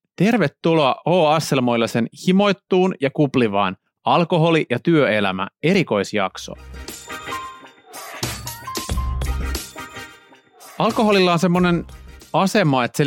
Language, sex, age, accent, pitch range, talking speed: Finnish, male, 30-49, native, 115-160 Hz, 70 wpm